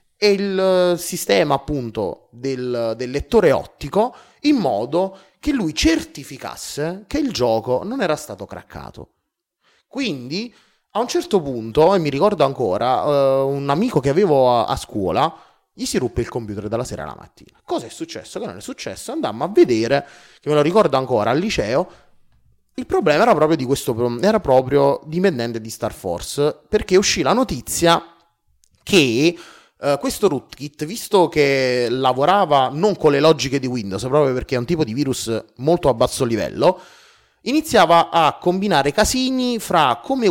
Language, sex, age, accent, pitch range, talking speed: Italian, male, 30-49, native, 125-200 Hz, 160 wpm